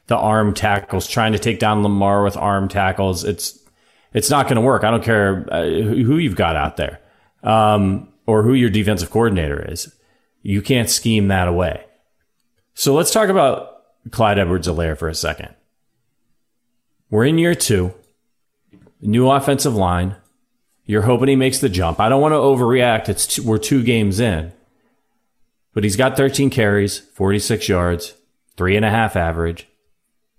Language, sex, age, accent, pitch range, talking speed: English, male, 40-59, American, 100-130 Hz, 155 wpm